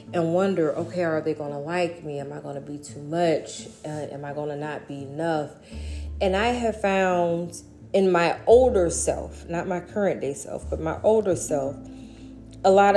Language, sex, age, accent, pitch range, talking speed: English, female, 30-49, American, 145-190 Hz, 185 wpm